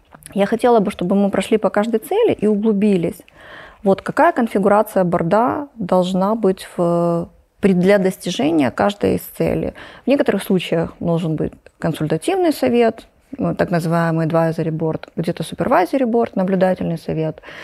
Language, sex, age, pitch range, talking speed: Ukrainian, female, 20-39, 175-225 Hz, 135 wpm